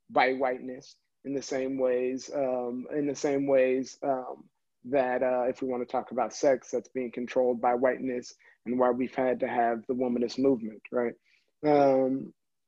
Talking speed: 175 wpm